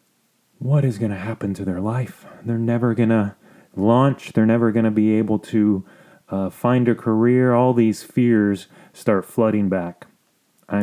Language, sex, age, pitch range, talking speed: English, male, 30-49, 105-125 Hz, 170 wpm